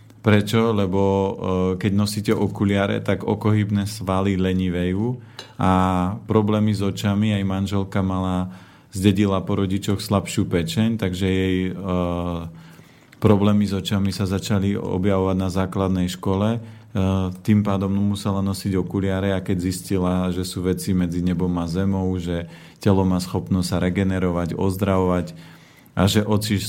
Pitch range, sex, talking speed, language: 90-105 Hz, male, 135 wpm, Slovak